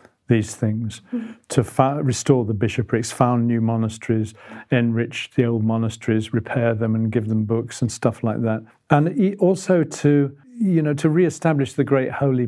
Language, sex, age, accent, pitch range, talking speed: English, male, 50-69, British, 115-130 Hz, 170 wpm